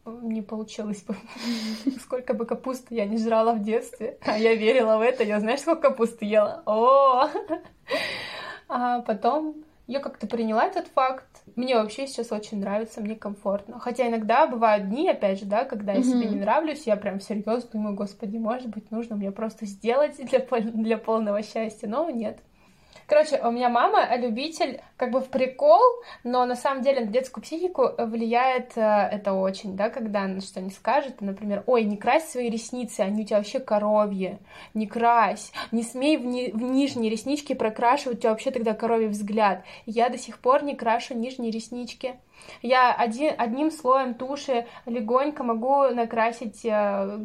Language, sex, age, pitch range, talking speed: Russian, female, 20-39, 215-255 Hz, 170 wpm